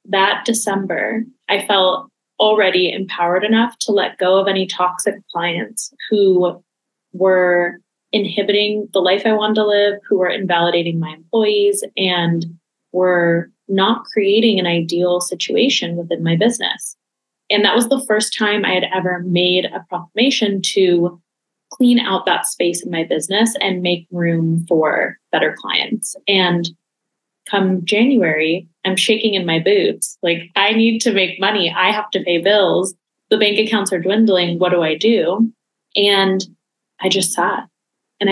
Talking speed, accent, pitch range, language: 150 wpm, American, 180-220 Hz, English